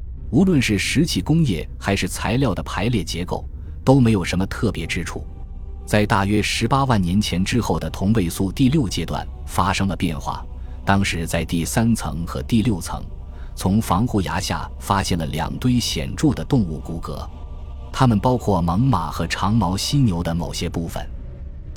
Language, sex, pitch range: Chinese, male, 80-110 Hz